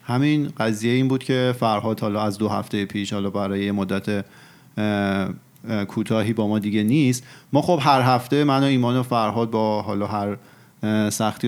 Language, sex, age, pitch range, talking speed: Persian, male, 40-59, 110-130 Hz, 165 wpm